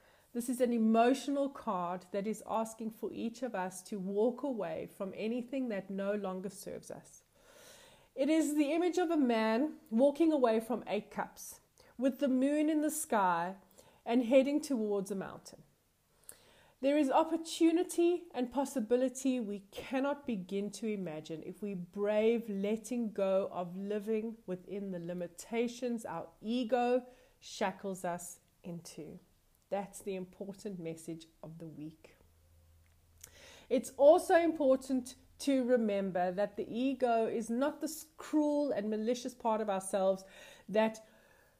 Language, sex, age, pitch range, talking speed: English, female, 30-49, 195-270 Hz, 135 wpm